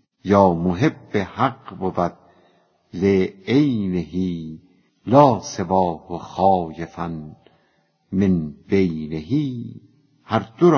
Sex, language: female, Persian